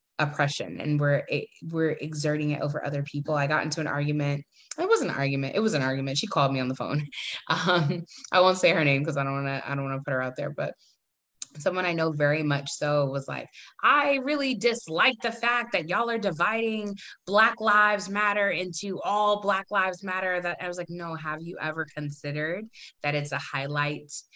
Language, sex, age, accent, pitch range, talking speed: English, female, 20-39, American, 145-190 Hz, 210 wpm